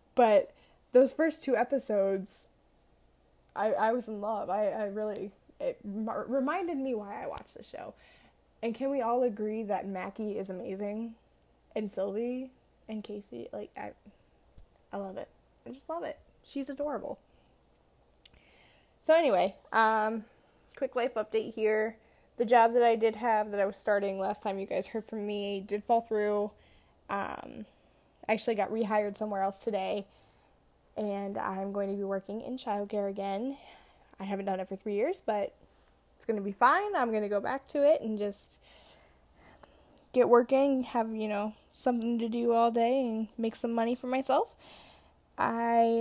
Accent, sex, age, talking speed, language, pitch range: American, female, 10-29, 170 wpm, English, 200-240 Hz